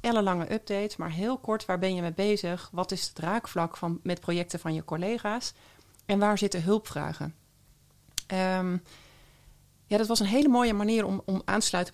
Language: Dutch